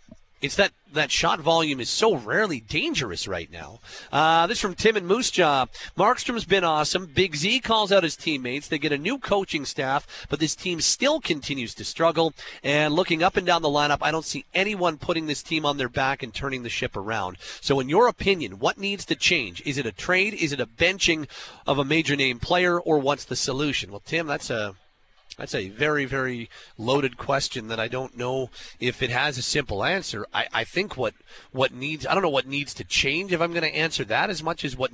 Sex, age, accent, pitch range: male, 40-59, American, 125-170 Hz